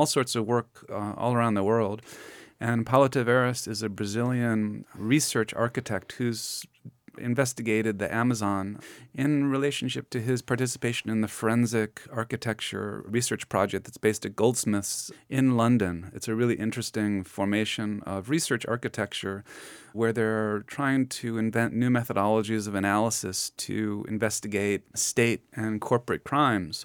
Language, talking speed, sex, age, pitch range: English, 135 wpm, male, 30-49, 105-120 Hz